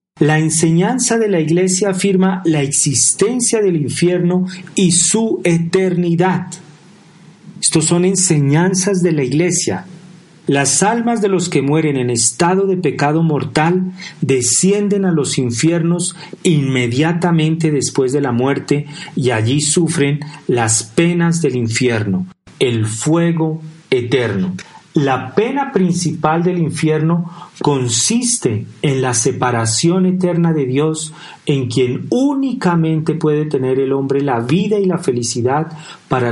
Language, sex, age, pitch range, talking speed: Spanish, male, 40-59, 130-180 Hz, 120 wpm